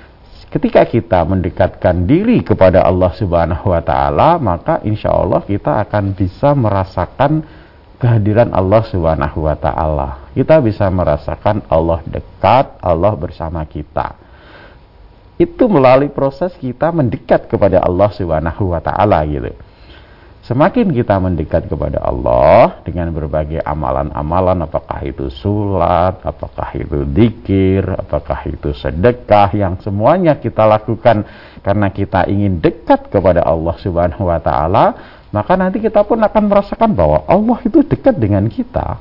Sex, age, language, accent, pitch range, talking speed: male, 50-69, Indonesian, native, 85-115 Hz, 125 wpm